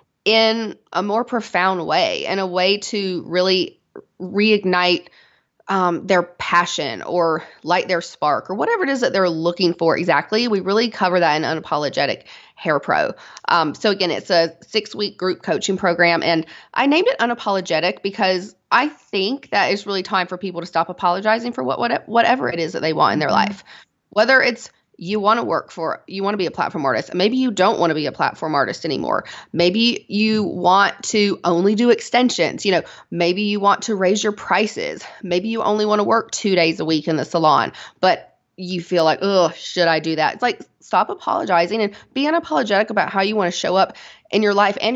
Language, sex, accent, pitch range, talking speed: English, female, American, 175-220 Hz, 205 wpm